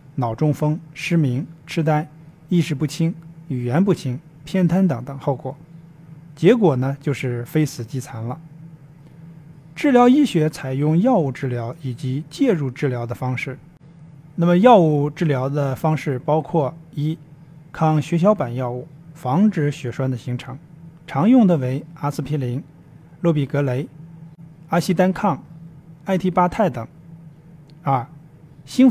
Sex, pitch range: male, 140-165 Hz